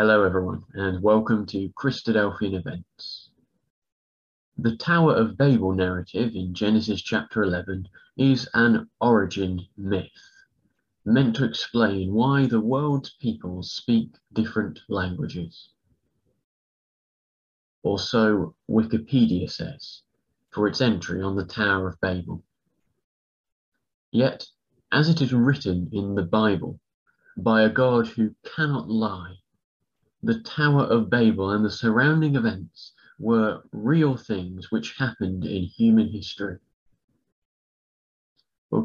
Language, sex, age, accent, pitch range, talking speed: English, male, 30-49, British, 95-120 Hz, 115 wpm